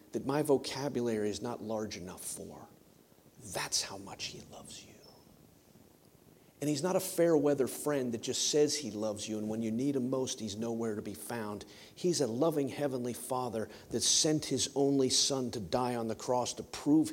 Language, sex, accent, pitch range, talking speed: English, male, American, 110-140 Hz, 195 wpm